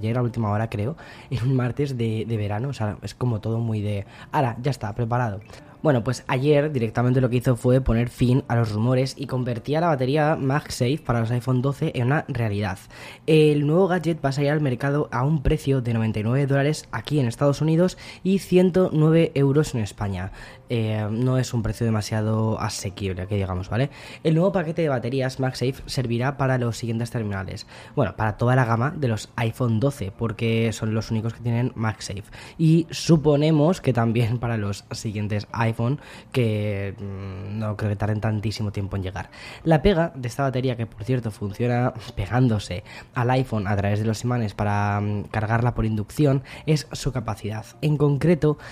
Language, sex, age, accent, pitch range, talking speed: Spanish, female, 10-29, Spanish, 110-145 Hz, 185 wpm